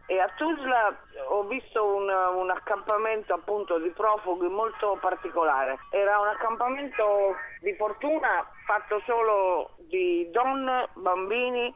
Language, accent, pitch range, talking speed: Italian, native, 170-220 Hz, 115 wpm